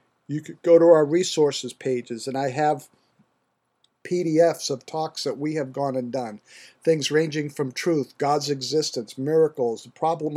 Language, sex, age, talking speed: English, male, 50-69, 160 wpm